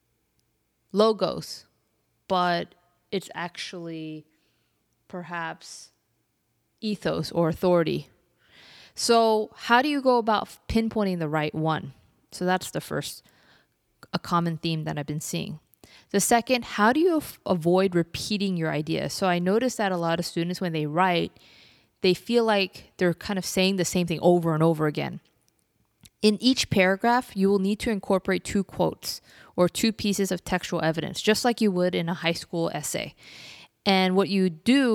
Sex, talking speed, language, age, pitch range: female, 160 wpm, English, 20-39, 165-210 Hz